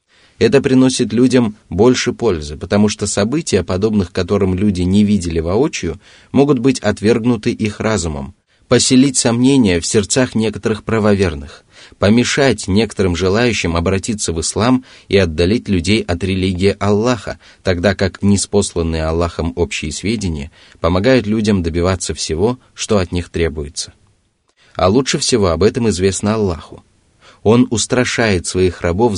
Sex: male